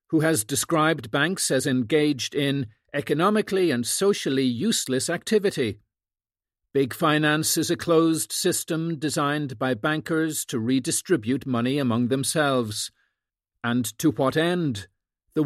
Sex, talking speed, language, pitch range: male, 120 wpm, English, 120-160 Hz